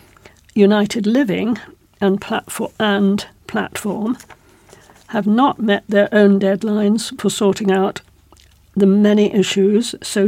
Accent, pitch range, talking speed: British, 195-220 Hz, 100 wpm